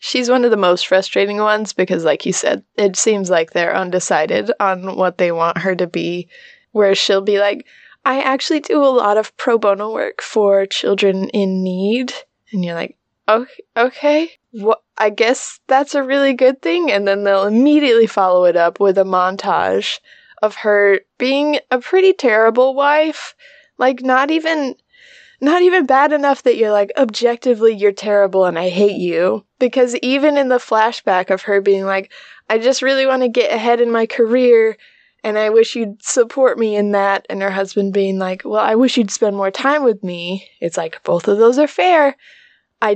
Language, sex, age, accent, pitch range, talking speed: English, female, 20-39, American, 195-255 Hz, 190 wpm